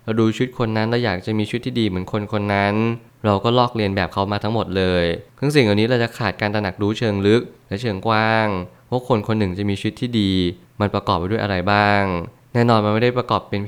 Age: 20-39